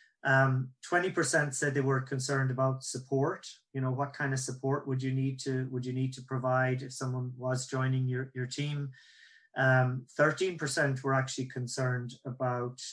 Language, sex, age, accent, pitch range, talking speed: English, male, 30-49, Irish, 130-145 Hz, 165 wpm